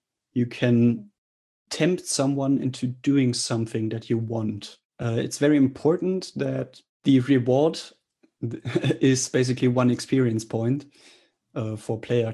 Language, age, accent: English, 30-49, German